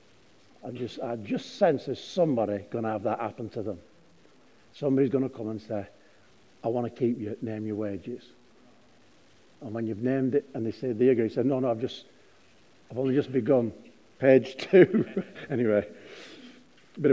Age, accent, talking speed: 60-79, British, 175 wpm